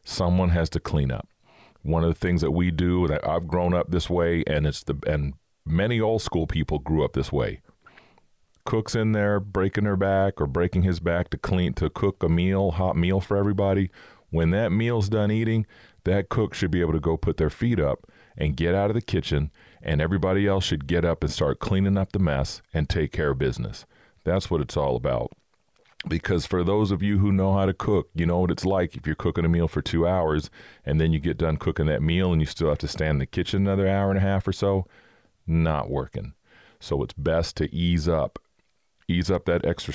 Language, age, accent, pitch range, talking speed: English, 40-59, American, 80-95 Hz, 230 wpm